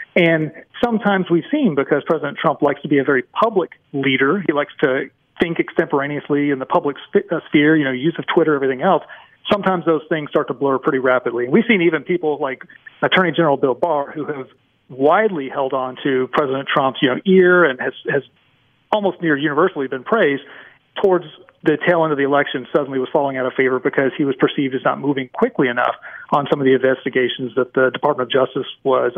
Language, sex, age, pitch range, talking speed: English, male, 40-59, 140-175 Hz, 205 wpm